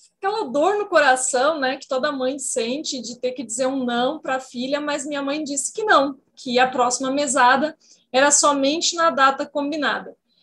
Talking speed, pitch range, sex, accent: 190 wpm, 255-305 Hz, female, Brazilian